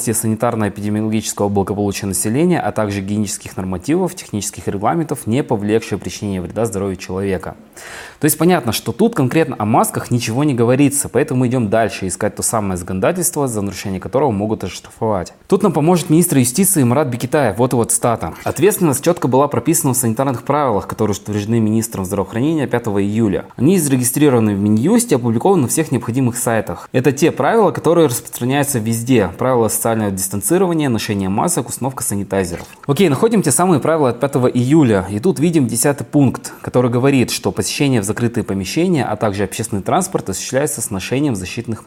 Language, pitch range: Russian, 105-145 Hz